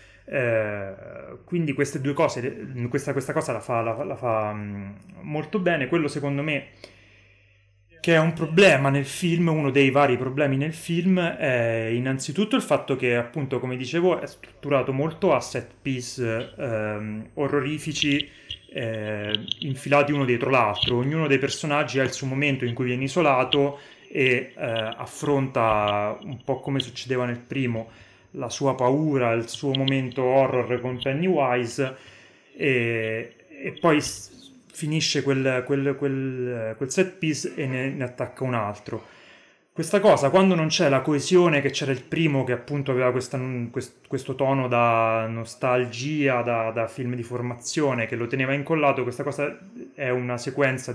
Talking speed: 150 wpm